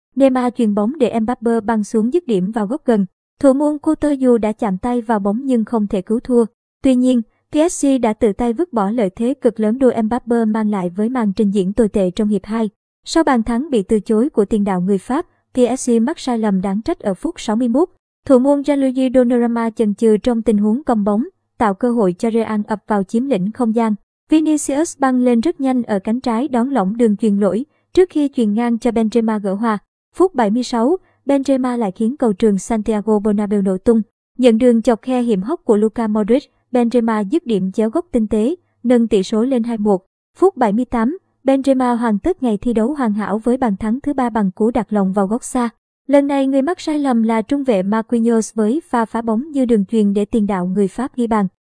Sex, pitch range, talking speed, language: male, 215-255 Hz, 220 wpm, Vietnamese